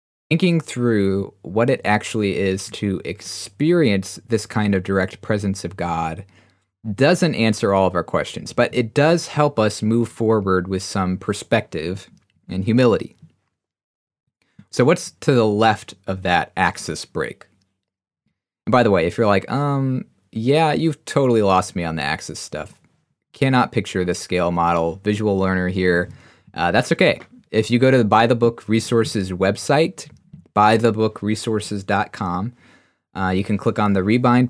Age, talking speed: 20-39, 160 wpm